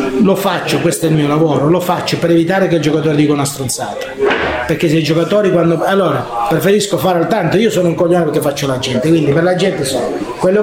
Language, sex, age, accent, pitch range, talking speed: Italian, male, 40-59, native, 170-215 Hz, 230 wpm